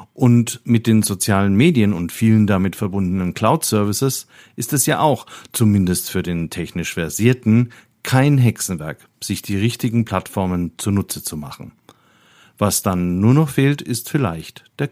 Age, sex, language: 50-69, male, German